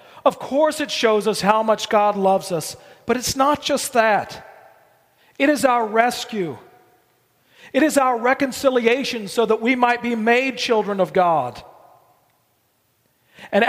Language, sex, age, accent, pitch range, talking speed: English, male, 40-59, American, 220-260 Hz, 145 wpm